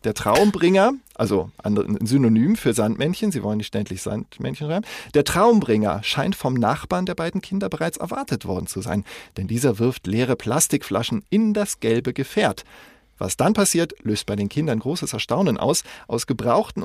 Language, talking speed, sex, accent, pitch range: German, 165 wpm, male, German, 110-170 Hz